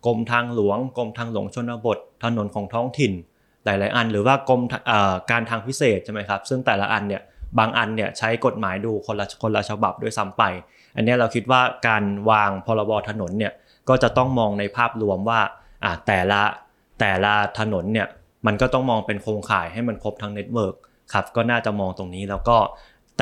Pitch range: 100-120 Hz